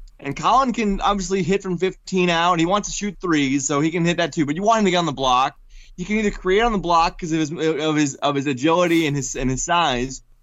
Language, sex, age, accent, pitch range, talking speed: English, male, 20-39, American, 145-185 Hz, 275 wpm